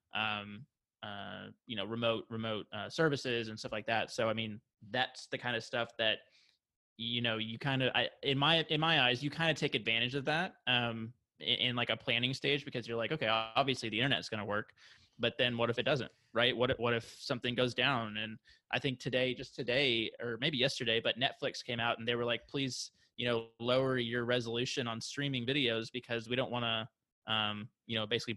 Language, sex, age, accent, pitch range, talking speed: English, male, 20-39, American, 115-130 Hz, 220 wpm